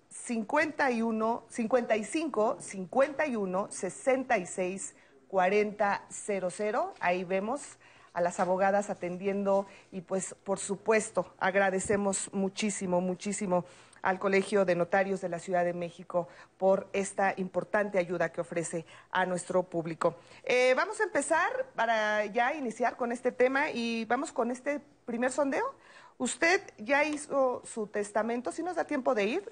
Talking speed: 130 wpm